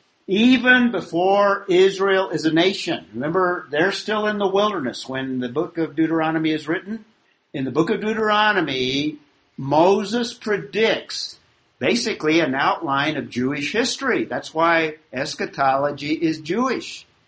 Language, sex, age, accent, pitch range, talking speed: English, male, 50-69, American, 145-195 Hz, 130 wpm